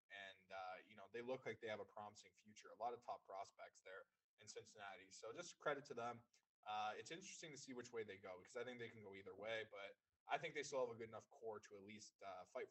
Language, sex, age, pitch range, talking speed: English, male, 20-39, 105-145 Hz, 270 wpm